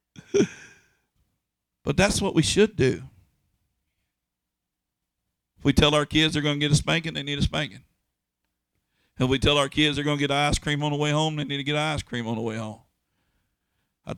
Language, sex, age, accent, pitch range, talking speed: English, male, 50-69, American, 125-150 Hz, 200 wpm